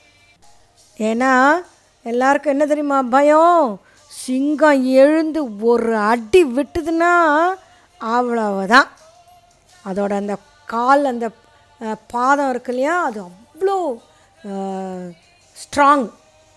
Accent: native